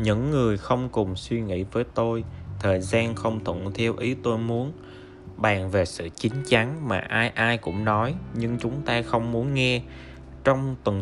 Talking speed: 185 wpm